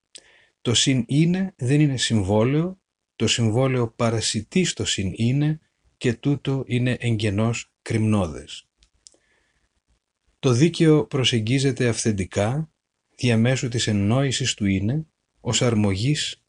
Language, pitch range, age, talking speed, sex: Greek, 110-140 Hz, 40-59, 105 wpm, male